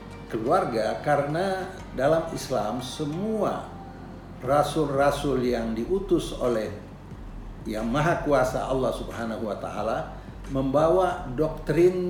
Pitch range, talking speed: 120-160 Hz, 90 wpm